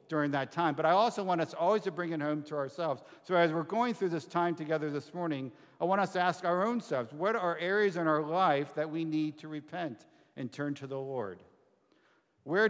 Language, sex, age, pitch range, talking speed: English, male, 50-69, 135-175 Hz, 235 wpm